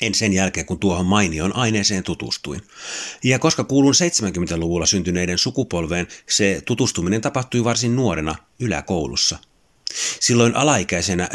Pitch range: 85-105 Hz